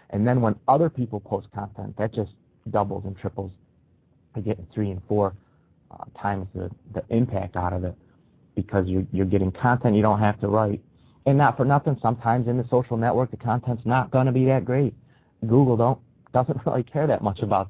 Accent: American